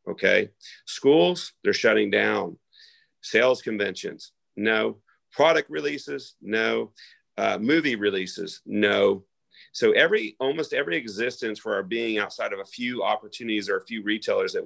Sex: male